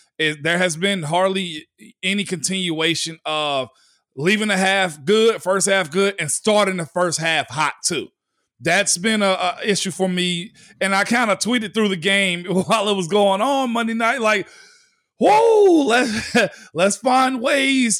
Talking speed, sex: 165 wpm, male